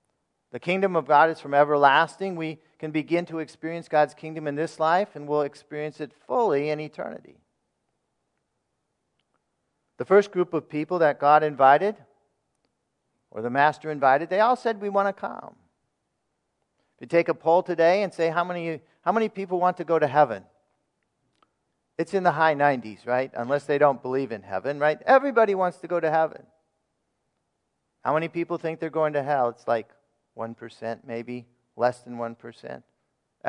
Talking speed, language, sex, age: 170 wpm, English, male, 50-69